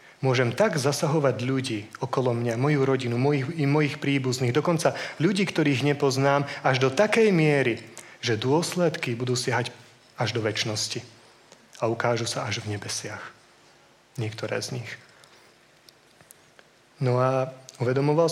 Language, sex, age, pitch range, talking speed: Slovak, male, 30-49, 120-150 Hz, 130 wpm